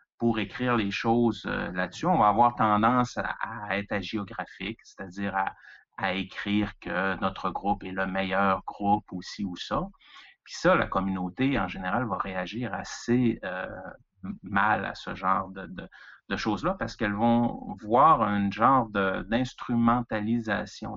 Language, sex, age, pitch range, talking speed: French, male, 30-49, 100-120 Hz, 155 wpm